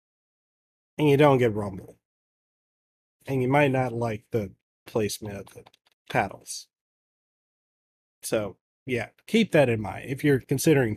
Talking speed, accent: 130 wpm, American